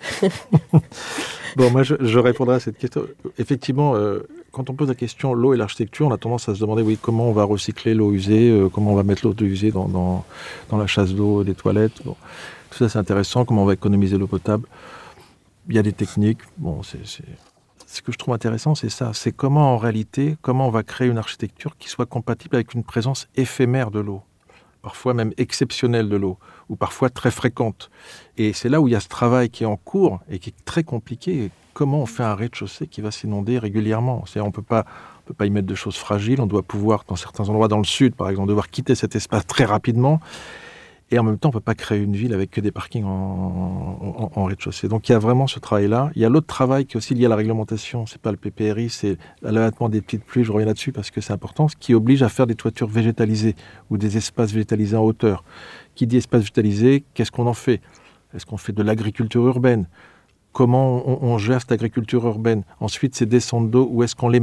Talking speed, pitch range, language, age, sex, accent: 235 wpm, 105-125 Hz, French, 40-59, male, French